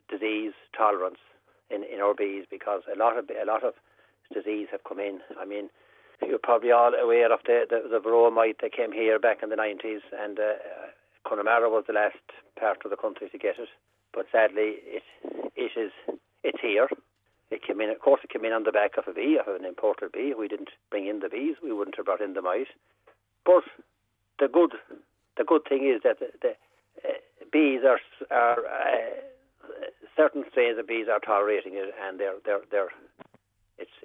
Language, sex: English, male